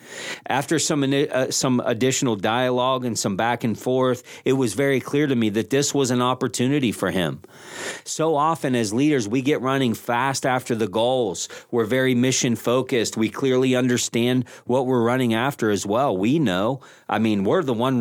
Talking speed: 185 wpm